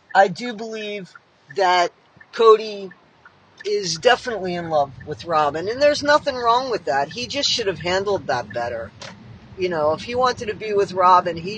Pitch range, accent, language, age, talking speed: 170-235 Hz, American, English, 50-69, 175 wpm